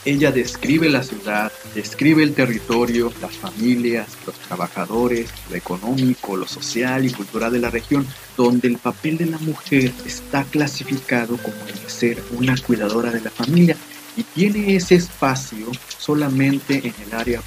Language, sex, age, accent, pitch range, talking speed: Spanish, male, 50-69, Mexican, 110-140 Hz, 150 wpm